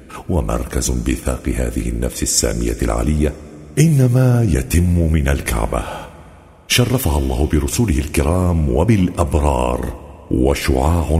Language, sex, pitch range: Arabic, male, 70-90 Hz